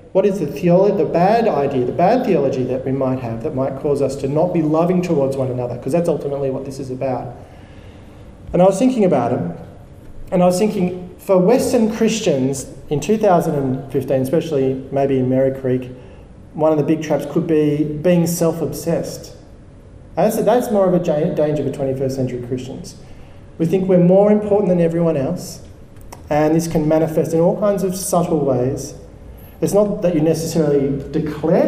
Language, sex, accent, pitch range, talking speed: English, male, Australian, 135-170 Hz, 175 wpm